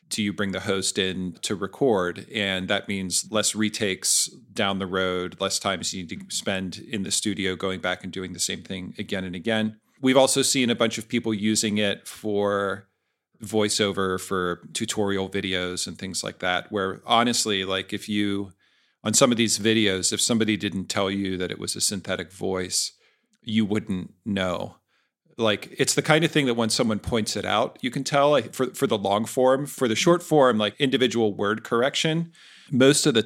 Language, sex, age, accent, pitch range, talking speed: English, male, 40-59, American, 95-115 Hz, 195 wpm